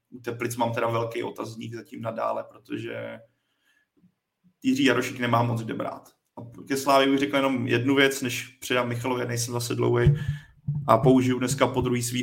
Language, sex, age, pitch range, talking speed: Czech, male, 30-49, 120-130 Hz, 165 wpm